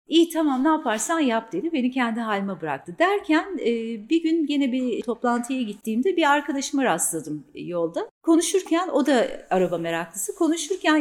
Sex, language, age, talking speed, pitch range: female, Turkish, 40-59, 145 wpm, 225-320 Hz